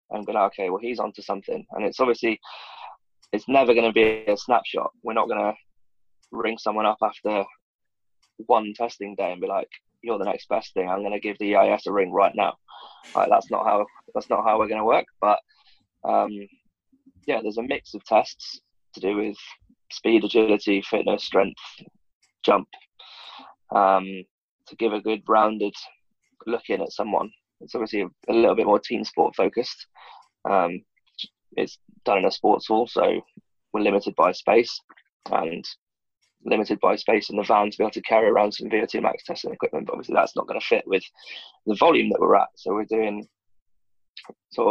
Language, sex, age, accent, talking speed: English, male, 20-39, British, 185 wpm